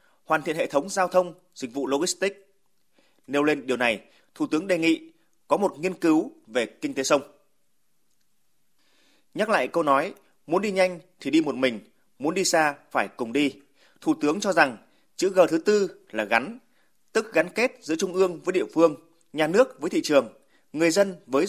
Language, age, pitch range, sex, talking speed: Vietnamese, 30-49, 140-195 Hz, male, 195 wpm